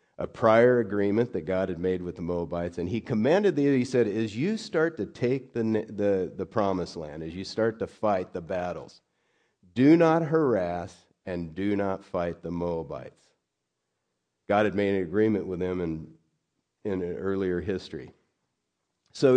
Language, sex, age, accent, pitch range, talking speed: English, male, 50-69, American, 90-125 Hz, 170 wpm